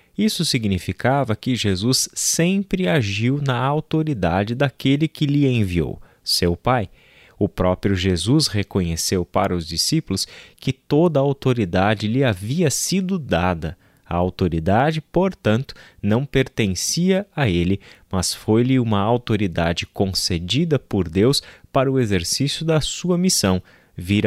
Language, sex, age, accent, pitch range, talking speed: Portuguese, male, 20-39, Brazilian, 95-135 Hz, 125 wpm